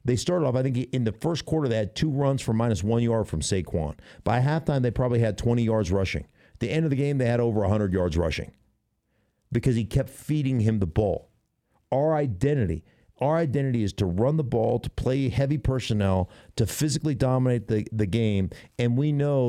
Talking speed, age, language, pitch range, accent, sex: 210 wpm, 50-69, English, 100-130 Hz, American, male